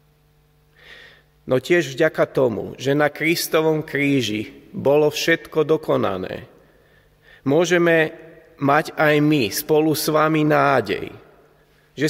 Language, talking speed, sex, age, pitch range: Slovak, 100 wpm, male, 40-59, 135-160 Hz